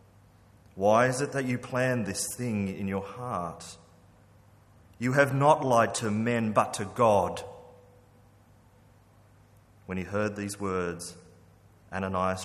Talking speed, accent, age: 125 wpm, Australian, 30-49